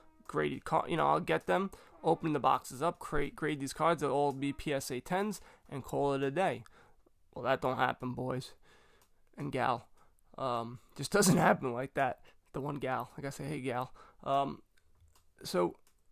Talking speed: 185 wpm